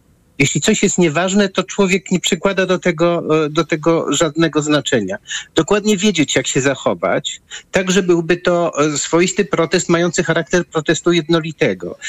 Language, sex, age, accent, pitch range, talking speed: Polish, male, 50-69, native, 135-175 Hz, 140 wpm